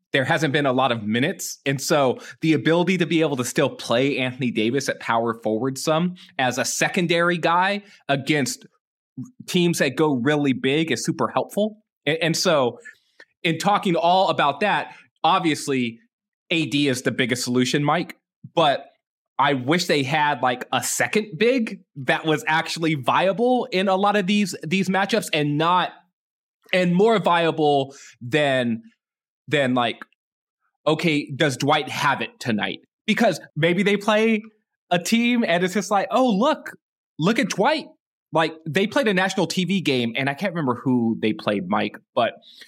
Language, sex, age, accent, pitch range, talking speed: English, male, 20-39, American, 130-190 Hz, 160 wpm